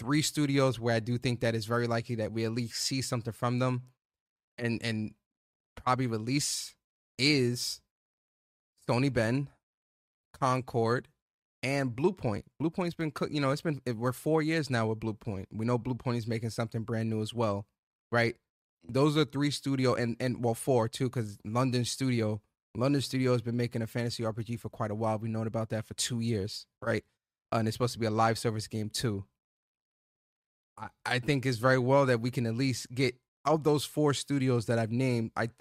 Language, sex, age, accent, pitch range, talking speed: English, male, 20-39, American, 115-130 Hz, 190 wpm